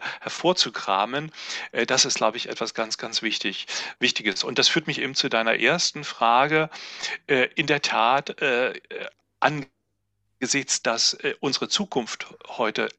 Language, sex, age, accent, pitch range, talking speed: German, male, 40-59, German, 120-160 Hz, 120 wpm